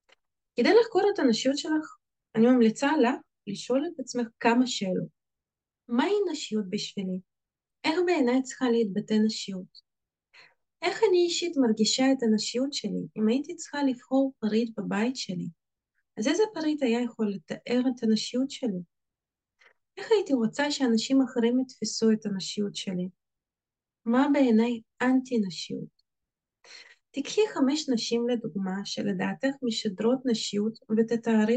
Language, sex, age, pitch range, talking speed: Hebrew, female, 20-39, 200-260 Hz, 125 wpm